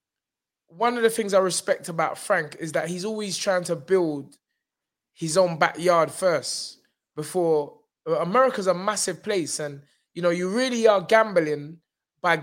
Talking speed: 155 wpm